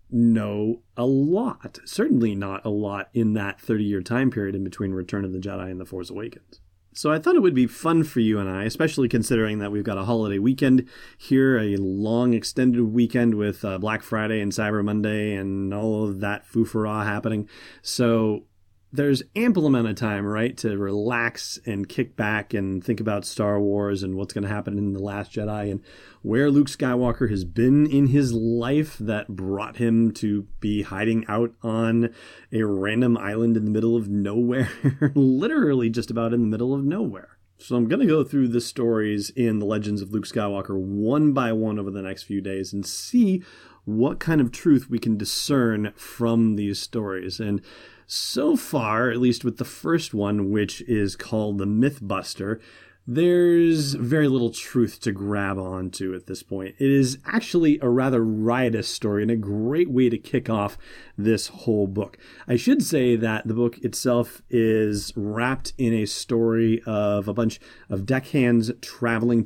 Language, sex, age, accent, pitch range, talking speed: English, male, 30-49, American, 100-125 Hz, 180 wpm